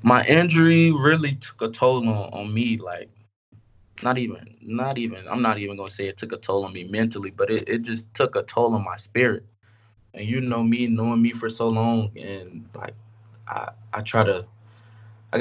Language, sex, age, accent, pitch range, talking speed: English, male, 20-39, American, 100-115 Hz, 205 wpm